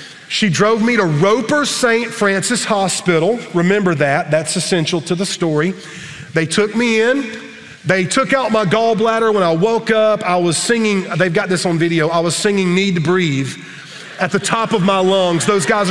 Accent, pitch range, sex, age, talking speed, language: American, 170-225 Hz, male, 40-59, 190 wpm, English